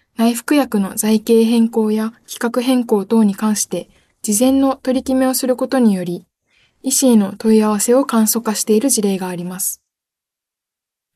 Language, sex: Japanese, female